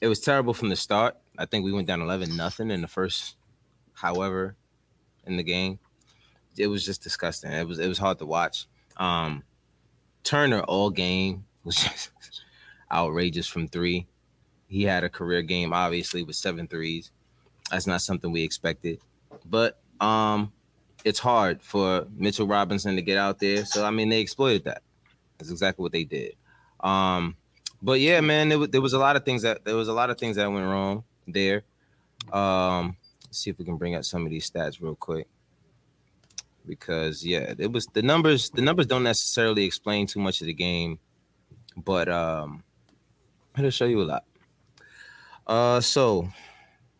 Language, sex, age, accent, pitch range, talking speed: English, male, 20-39, American, 85-110 Hz, 175 wpm